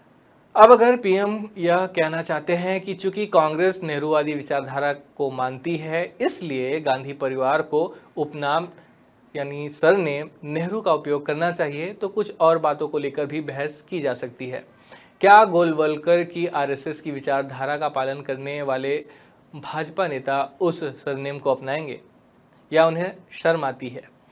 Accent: native